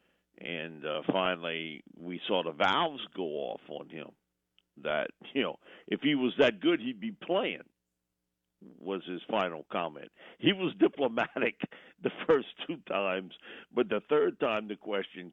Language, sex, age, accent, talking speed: English, male, 50-69, American, 155 wpm